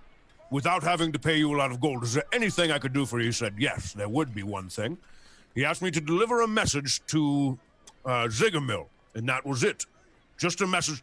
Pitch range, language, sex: 140-185 Hz, English, male